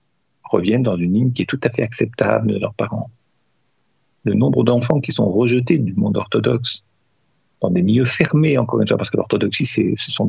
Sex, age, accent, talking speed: male, 50-69, French, 200 wpm